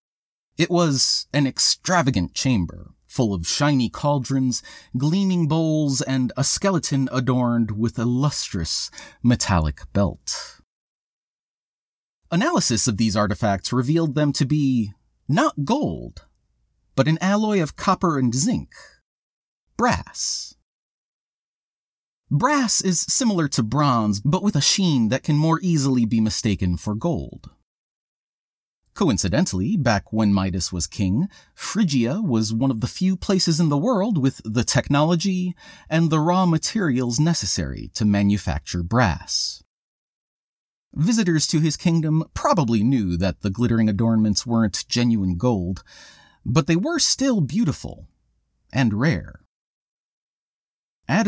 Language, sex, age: English, male, 30-49